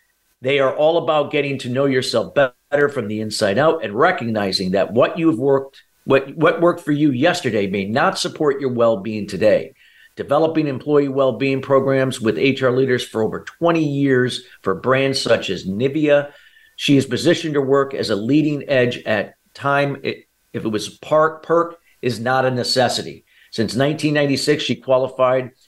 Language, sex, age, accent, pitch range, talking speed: English, male, 50-69, American, 120-145 Hz, 175 wpm